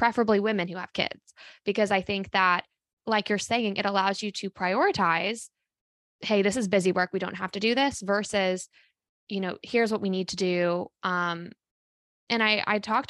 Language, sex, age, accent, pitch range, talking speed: English, female, 20-39, American, 185-230 Hz, 195 wpm